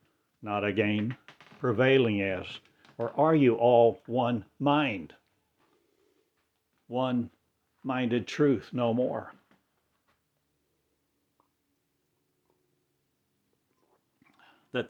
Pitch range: 100-125 Hz